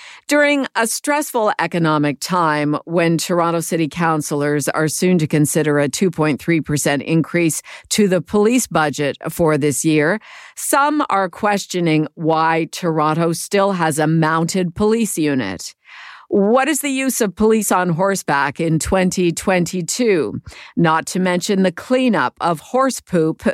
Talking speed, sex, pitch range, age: 135 wpm, female, 155-195 Hz, 50-69